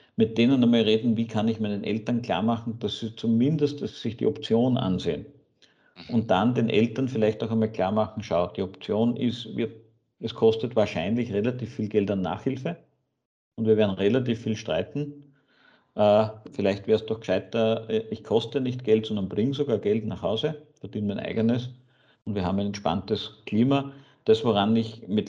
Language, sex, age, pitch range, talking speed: German, male, 50-69, 105-115 Hz, 185 wpm